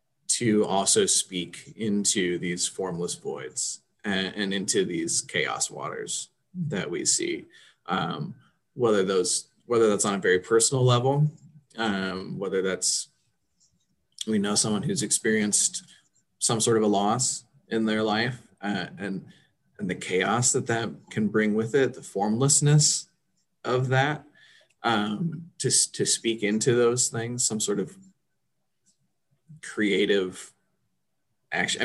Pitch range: 105-150 Hz